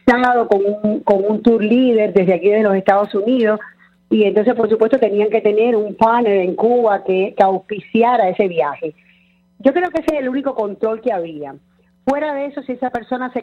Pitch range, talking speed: 200-245 Hz, 200 wpm